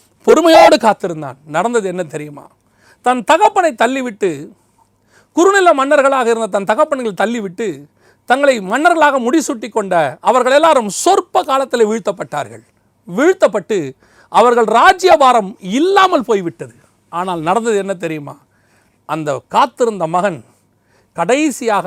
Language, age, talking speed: Tamil, 40-59, 100 wpm